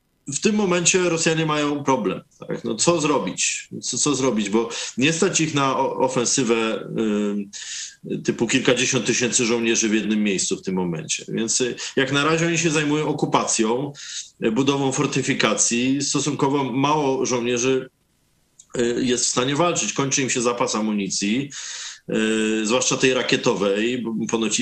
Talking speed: 135 wpm